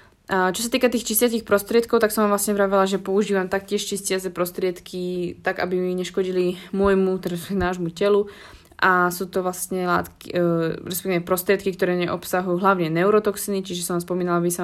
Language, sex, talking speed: Slovak, female, 170 wpm